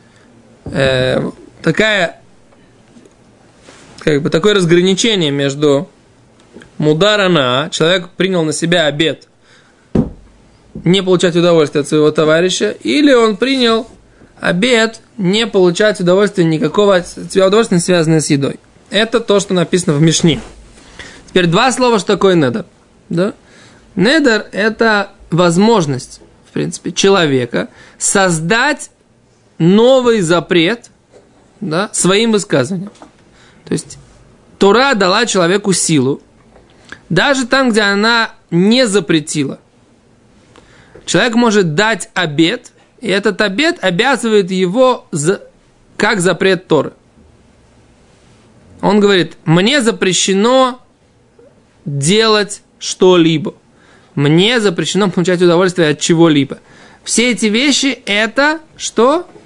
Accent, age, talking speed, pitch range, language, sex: native, 20-39, 100 wpm, 165-220 Hz, Russian, male